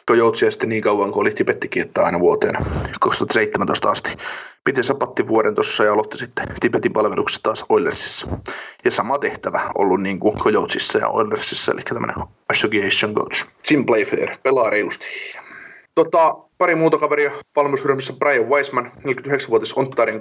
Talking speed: 130 wpm